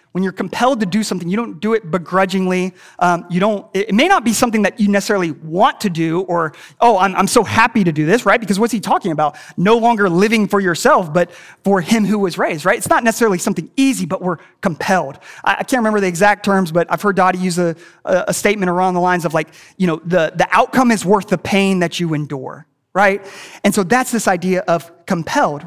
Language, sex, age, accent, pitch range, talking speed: English, male, 30-49, American, 170-225 Hz, 235 wpm